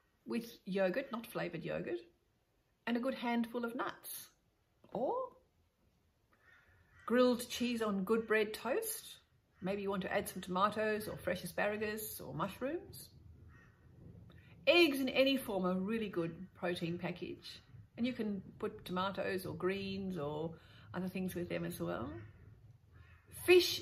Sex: female